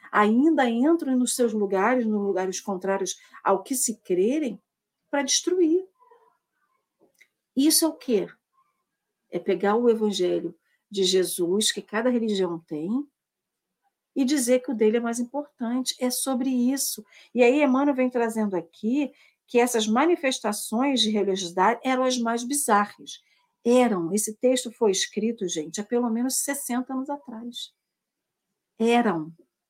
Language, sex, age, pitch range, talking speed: Portuguese, female, 50-69, 205-270 Hz, 135 wpm